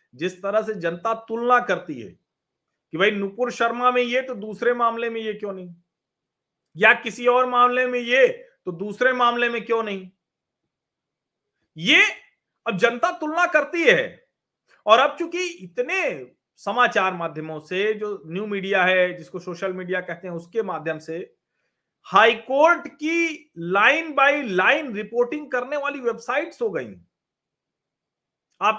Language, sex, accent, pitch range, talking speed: Hindi, male, native, 185-275 Hz, 145 wpm